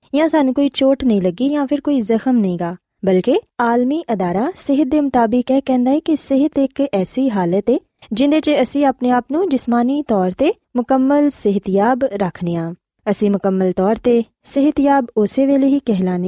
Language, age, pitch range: Urdu, 20-39, 200-280 Hz